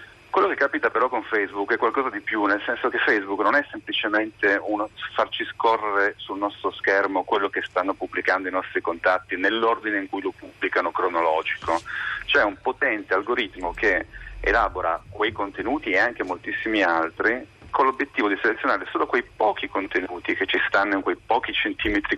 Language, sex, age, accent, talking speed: Italian, male, 40-59, native, 170 wpm